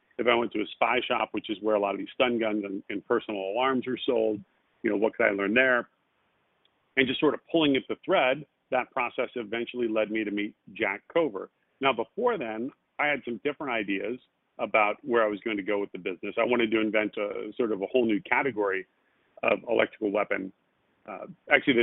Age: 40-59